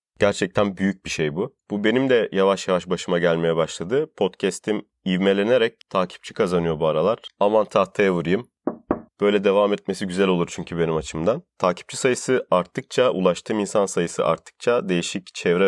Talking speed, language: 150 wpm, Turkish